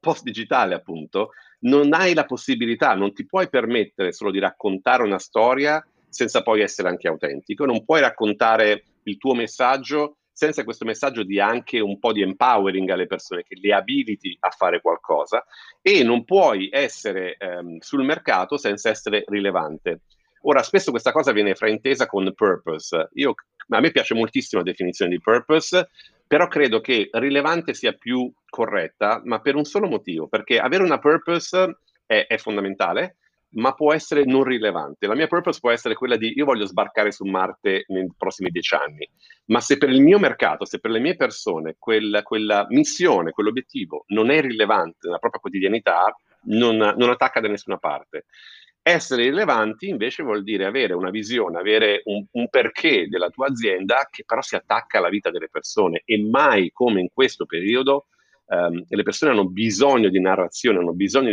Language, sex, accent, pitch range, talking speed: Italian, male, native, 100-155 Hz, 170 wpm